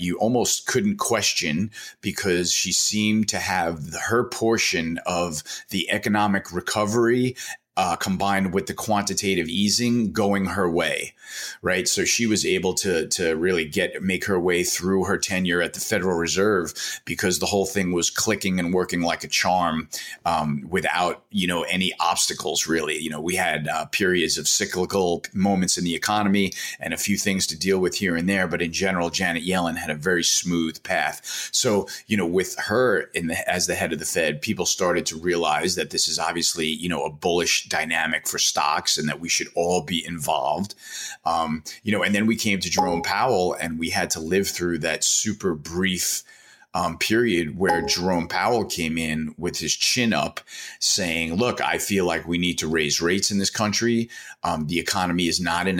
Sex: male